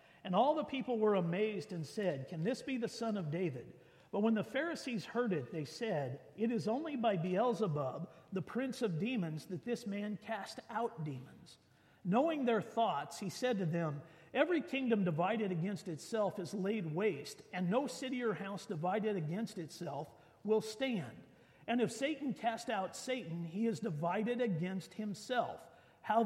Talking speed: 170 wpm